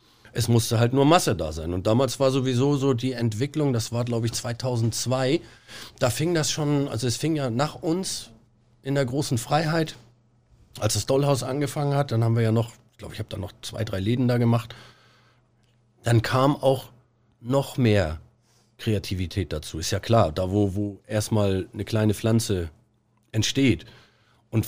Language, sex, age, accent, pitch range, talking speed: German, male, 40-59, German, 110-145 Hz, 175 wpm